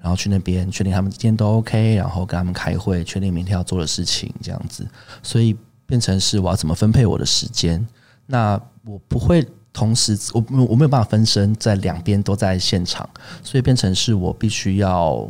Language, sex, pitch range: Chinese, male, 90-115 Hz